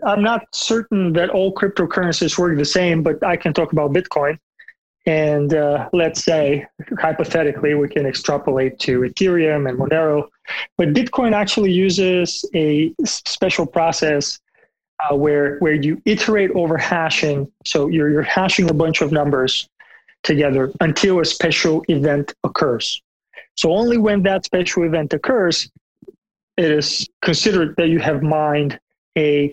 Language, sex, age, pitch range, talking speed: English, male, 30-49, 150-185 Hz, 140 wpm